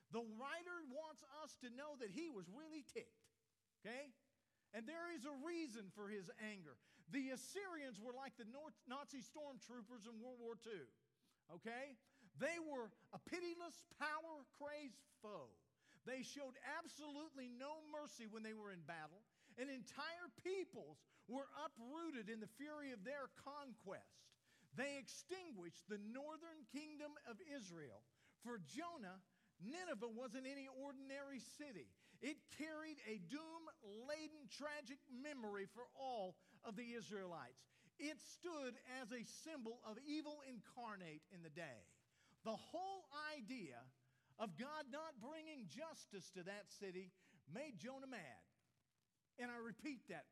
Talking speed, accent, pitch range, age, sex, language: 135 wpm, American, 215-295 Hz, 50-69, male, English